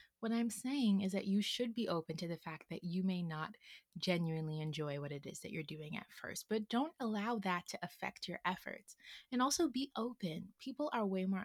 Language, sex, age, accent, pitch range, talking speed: English, female, 20-39, American, 165-215 Hz, 220 wpm